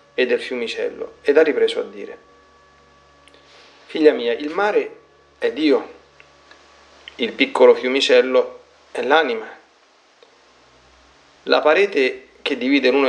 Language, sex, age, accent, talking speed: Italian, male, 30-49, native, 105 wpm